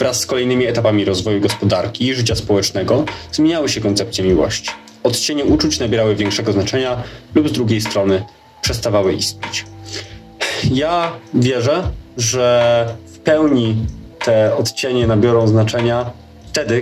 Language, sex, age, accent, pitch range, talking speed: Polish, male, 20-39, native, 110-135 Hz, 120 wpm